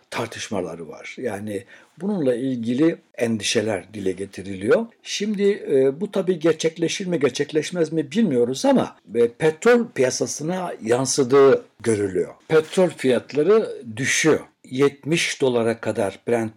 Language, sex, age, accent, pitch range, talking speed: Turkish, male, 60-79, native, 115-155 Hz, 110 wpm